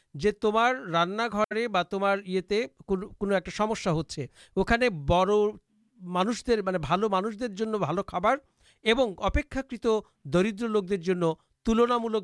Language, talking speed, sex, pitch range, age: Urdu, 95 wpm, male, 170-220 Hz, 50-69